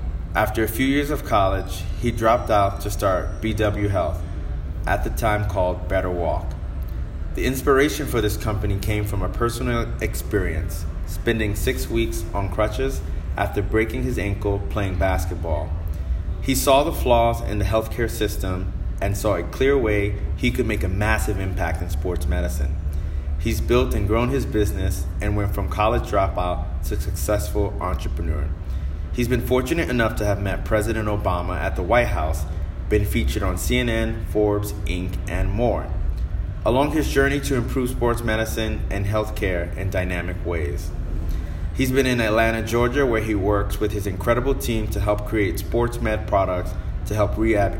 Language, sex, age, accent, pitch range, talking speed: English, male, 30-49, American, 80-110 Hz, 165 wpm